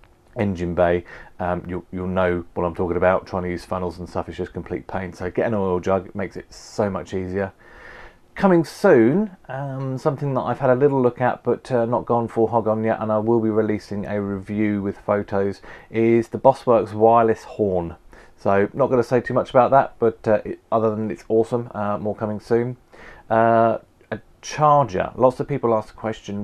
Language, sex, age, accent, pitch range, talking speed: English, male, 30-49, British, 100-115 Hz, 210 wpm